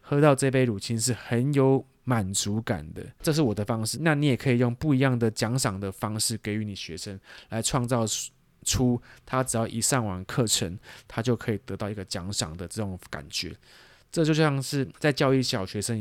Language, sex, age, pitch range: Chinese, male, 20-39, 105-130 Hz